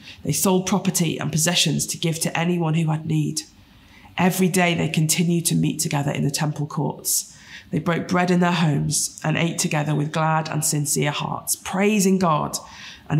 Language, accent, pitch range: English, British, 155-205 Hz